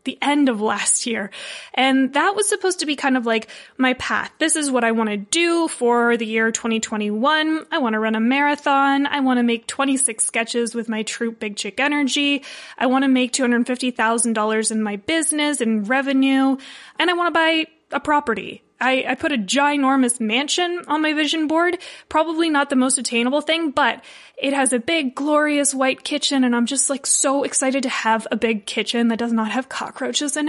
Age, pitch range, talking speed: 20-39, 230-295 Hz, 205 wpm